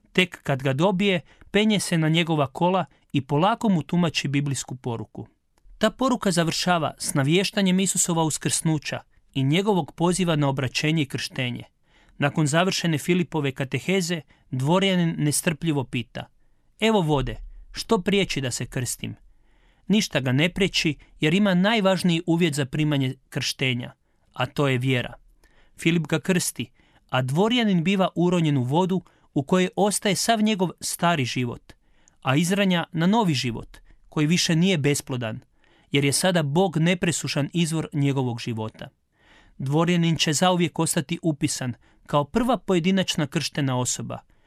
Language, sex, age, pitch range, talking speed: Croatian, male, 40-59, 135-180 Hz, 135 wpm